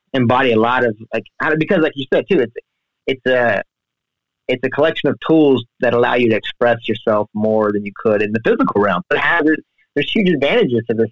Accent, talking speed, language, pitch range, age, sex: American, 215 wpm, English, 110-135 Hz, 30-49, male